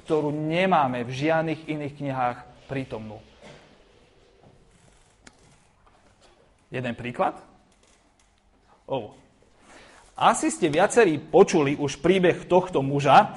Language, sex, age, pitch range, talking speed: Slovak, male, 30-49, 145-210 Hz, 85 wpm